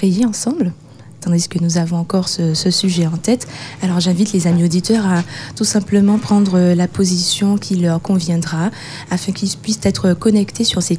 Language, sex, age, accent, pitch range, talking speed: French, female, 20-39, French, 165-200 Hz, 175 wpm